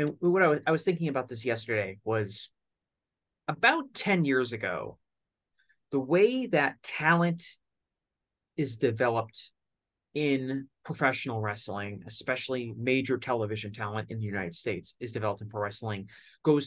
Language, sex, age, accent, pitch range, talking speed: English, male, 30-49, American, 110-140 Hz, 130 wpm